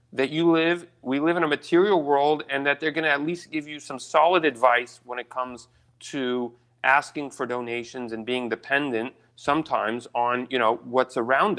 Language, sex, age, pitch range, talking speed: English, male, 40-59, 120-150 Hz, 190 wpm